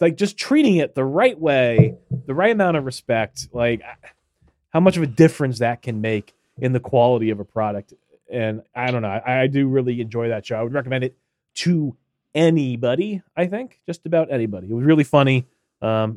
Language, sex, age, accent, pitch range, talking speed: English, male, 30-49, American, 115-160 Hz, 200 wpm